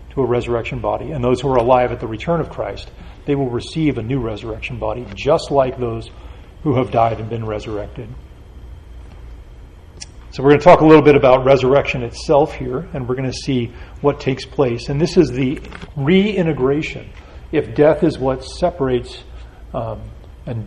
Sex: male